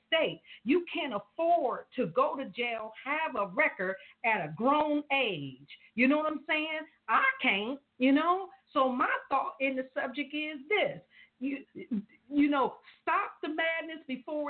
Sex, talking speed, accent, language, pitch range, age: female, 160 wpm, American, English, 215-290 Hz, 50-69